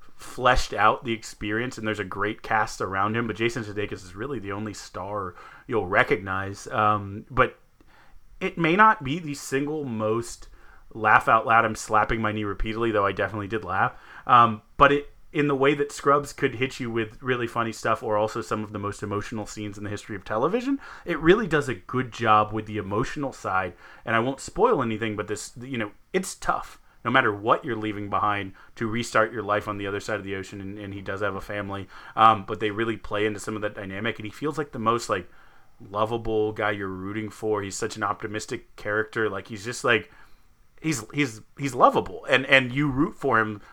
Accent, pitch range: American, 105-130 Hz